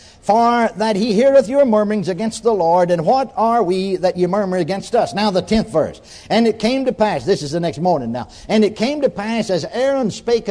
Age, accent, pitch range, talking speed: 60-79, American, 185-255 Hz, 235 wpm